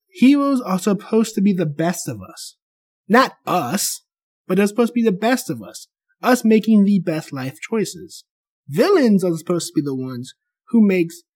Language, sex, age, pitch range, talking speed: English, male, 20-39, 155-225 Hz, 185 wpm